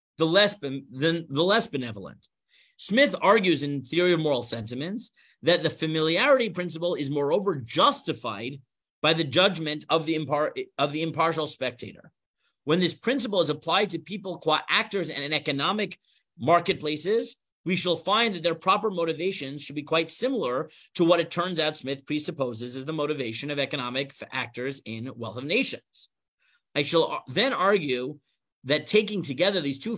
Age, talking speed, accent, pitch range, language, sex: 40-59, 165 wpm, American, 135-180 Hz, English, male